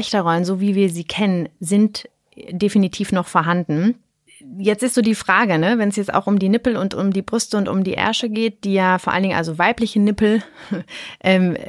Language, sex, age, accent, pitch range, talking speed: German, female, 30-49, German, 175-215 Hz, 205 wpm